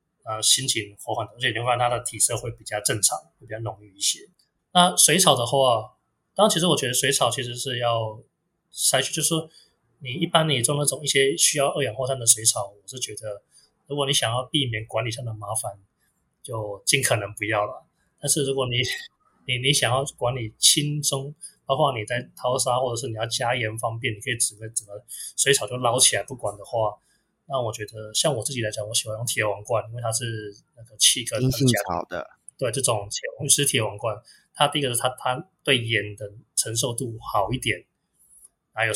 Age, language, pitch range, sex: 20-39, Chinese, 110-135 Hz, male